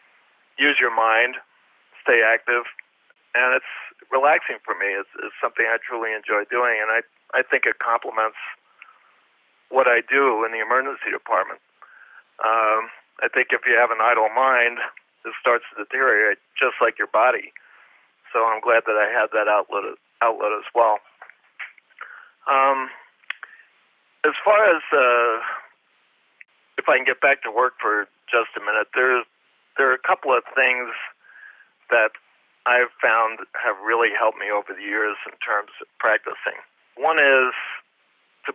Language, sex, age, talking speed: English, male, 40-59, 155 wpm